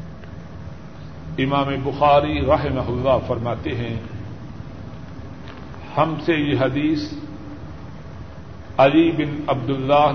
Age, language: 50-69, Urdu